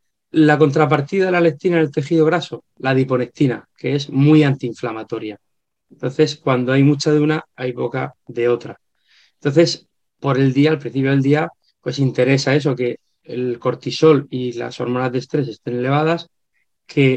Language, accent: Spanish, Spanish